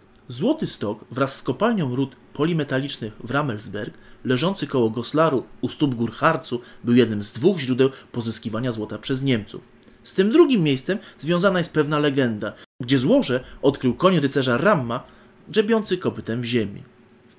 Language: Polish